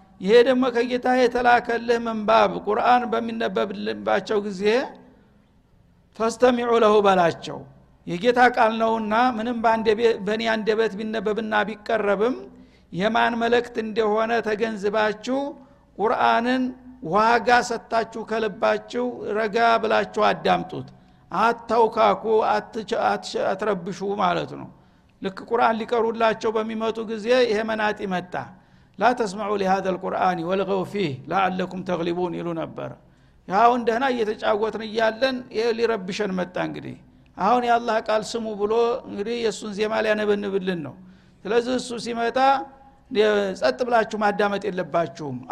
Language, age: Amharic, 60-79